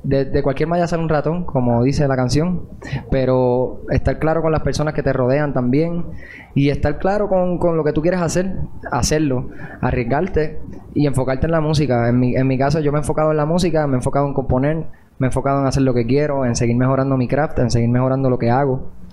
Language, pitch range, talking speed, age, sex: Spanish, 130-155 Hz, 230 wpm, 20-39, male